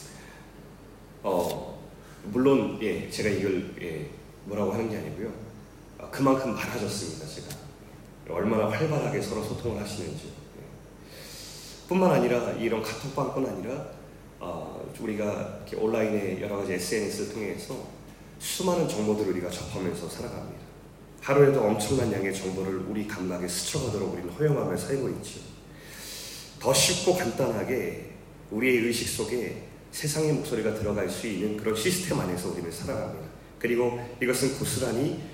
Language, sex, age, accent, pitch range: Korean, male, 30-49, native, 95-130 Hz